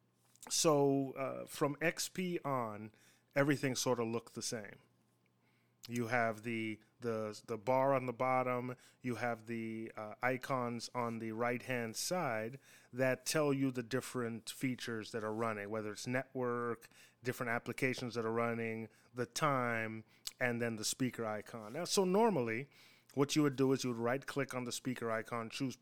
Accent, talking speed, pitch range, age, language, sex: American, 160 wpm, 115-140 Hz, 30-49, English, male